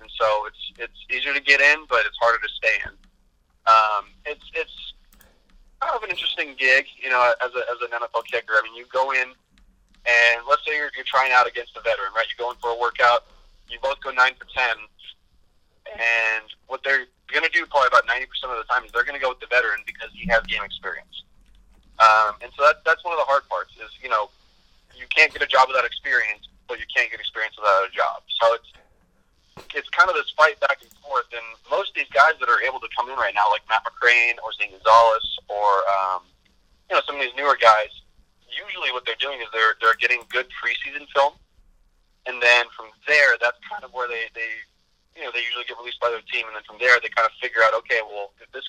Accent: American